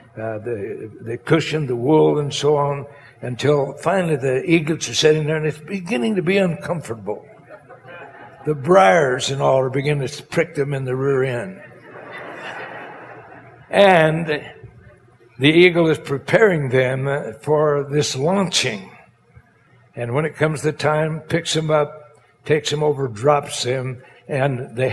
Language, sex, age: English, male, 60-79